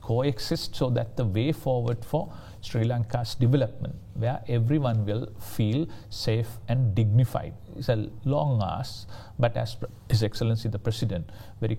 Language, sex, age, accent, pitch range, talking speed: English, male, 50-69, Indian, 105-120 Hz, 145 wpm